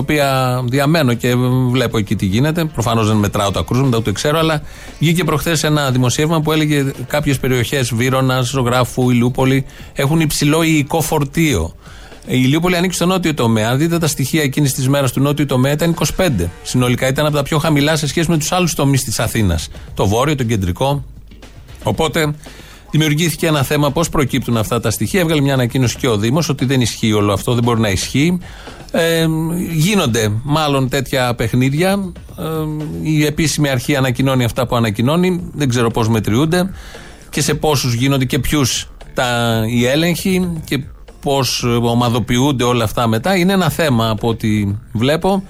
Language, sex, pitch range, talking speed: Greek, male, 120-155 Hz, 165 wpm